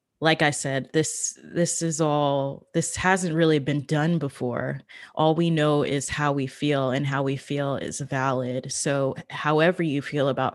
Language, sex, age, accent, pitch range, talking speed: English, female, 20-39, American, 140-155 Hz, 175 wpm